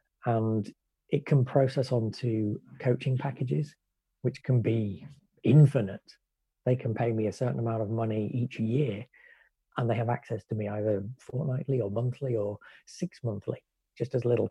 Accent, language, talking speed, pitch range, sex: British, English, 155 wpm, 110-130 Hz, male